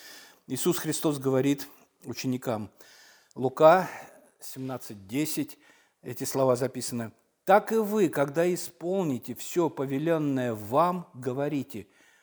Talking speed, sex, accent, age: 90 wpm, male, native, 50-69